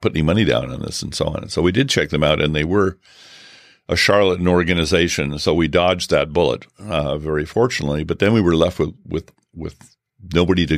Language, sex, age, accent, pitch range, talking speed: English, male, 50-69, American, 75-90 Hz, 225 wpm